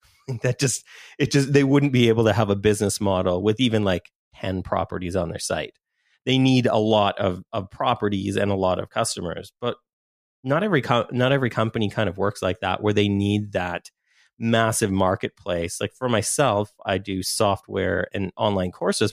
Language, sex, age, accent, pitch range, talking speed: English, male, 30-49, American, 95-115 Hz, 185 wpm